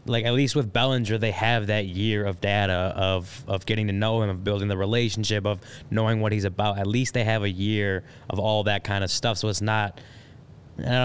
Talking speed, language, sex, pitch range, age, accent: 230 wpm, English, male, 105-120 Hz, 20-39, American